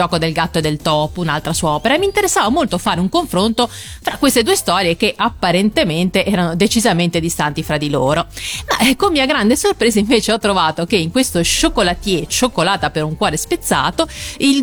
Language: Italian